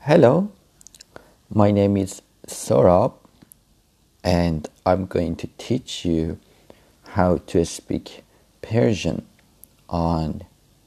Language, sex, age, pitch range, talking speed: Persian, male, 50-69, 85-100 Hz, 90 wpm